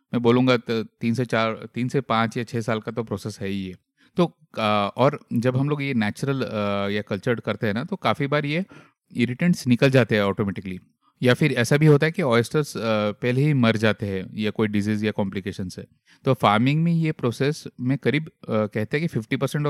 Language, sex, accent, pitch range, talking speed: Hindi, male, native, 110-145 Hz, 205 wpm